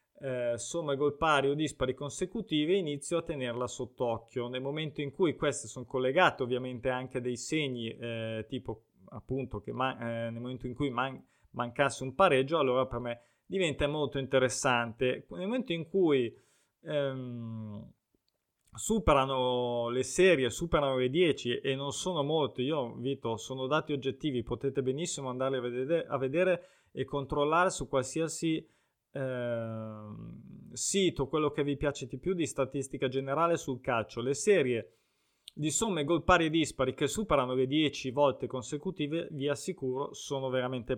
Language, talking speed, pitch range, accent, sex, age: Italian, 150 wpm, 120-145 Hz, native, male, 20-39